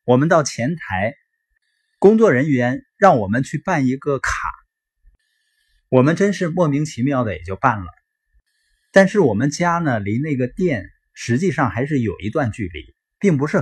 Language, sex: Chinese, male